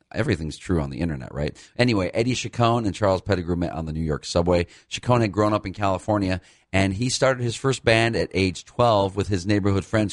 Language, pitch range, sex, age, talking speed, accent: English, 80-100 Hz, male, 40-59, 220 wpm, American